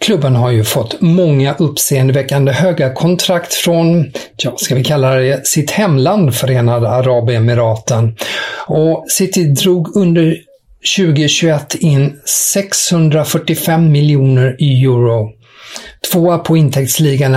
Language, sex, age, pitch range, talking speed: English, male, 50-69, 125-190 Hz, 100 wpm